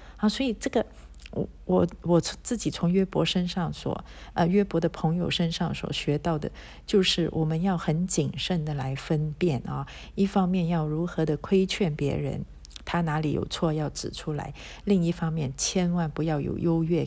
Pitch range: 150-185 Hz